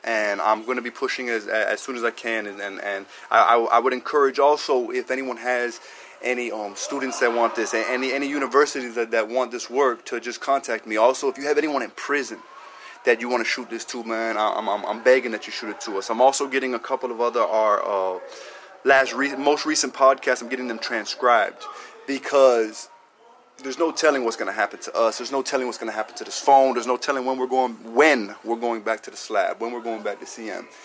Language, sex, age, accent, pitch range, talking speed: English, male, 20-39, American, 115-135 Hz, 255 wpm